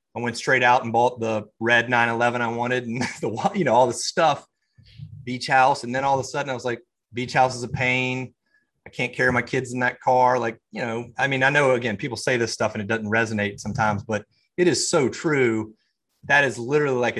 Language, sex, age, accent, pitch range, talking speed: English, male, 30-49, American, 110-125 Hz, 240 wpm